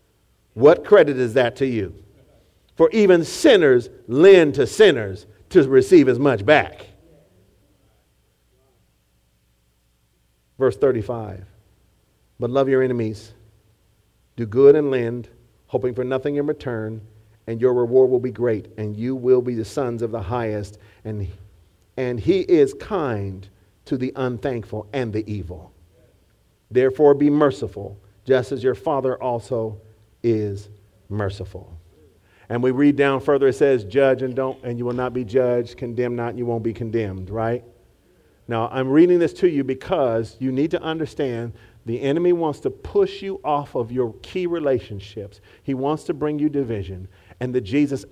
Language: English